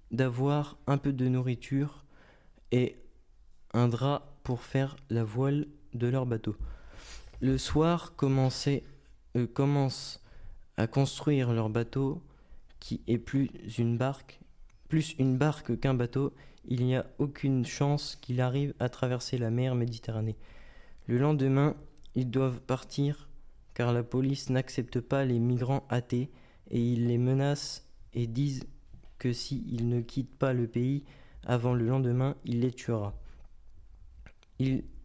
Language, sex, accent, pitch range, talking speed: French, male, French, 120-140 Hz, 135 wpm